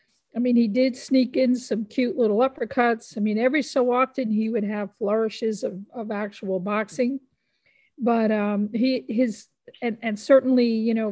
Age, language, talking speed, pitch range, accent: 50-69, English, 175 wpm, 200-230 Hz, American